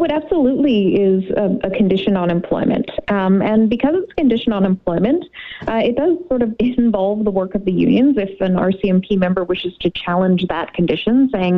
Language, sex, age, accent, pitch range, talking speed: English, female, 30-49, American, 180-240 Hz, 190 wpm